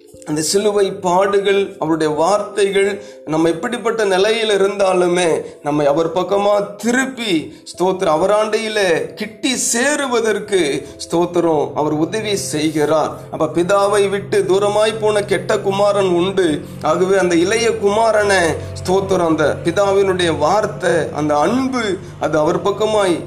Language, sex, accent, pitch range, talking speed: Tamil, male, native, 175-215 Hz, 110 wpm